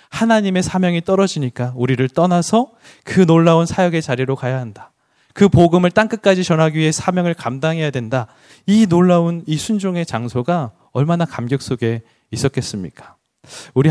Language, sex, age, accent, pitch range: Korean, male, 20-39, native, 130-180 Hz